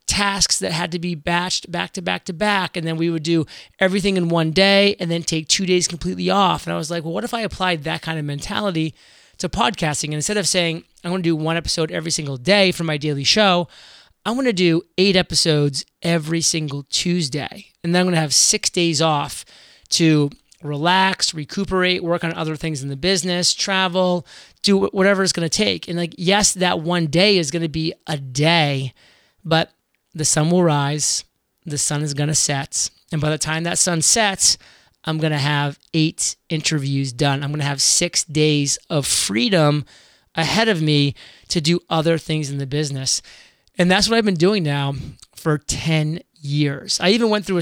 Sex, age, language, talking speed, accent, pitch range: male, 30-49, English, 205 wpm, American, 150-185 Hz